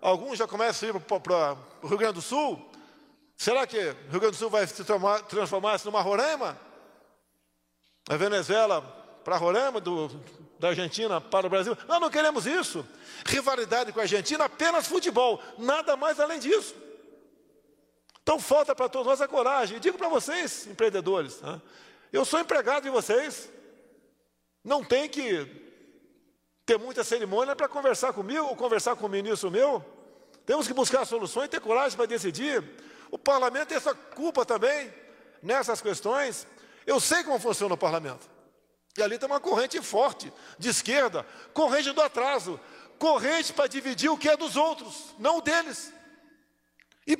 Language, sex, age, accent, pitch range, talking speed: Portuguese, male, 50-69, Brazilian, 215-305 Hz, 155 wpm